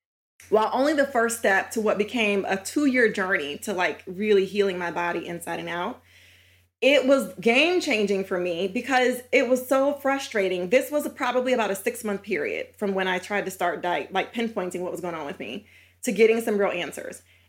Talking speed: 195 wpm